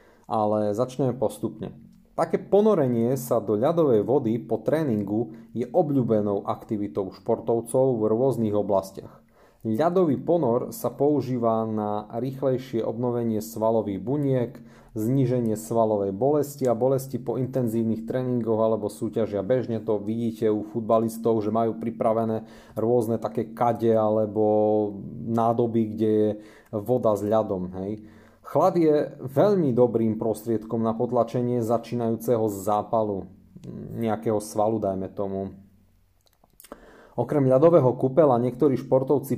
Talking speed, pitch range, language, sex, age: 115 wpm, 110-125 Hz, Slovak, male, 30-49